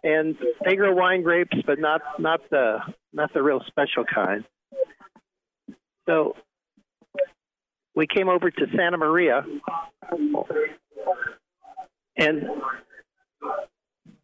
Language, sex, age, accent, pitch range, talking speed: English, male, 60-79, American, 155-205 Hz, 95 wpm